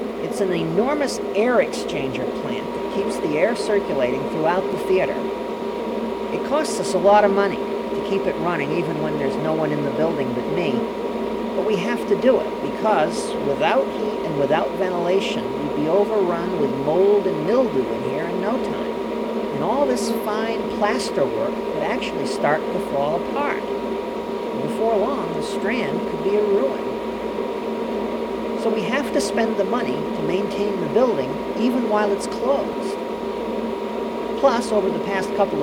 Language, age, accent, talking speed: English, 50-69, American, 165 wpm